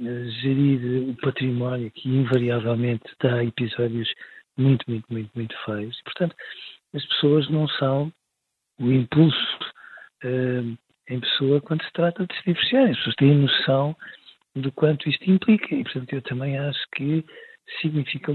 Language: Portuguese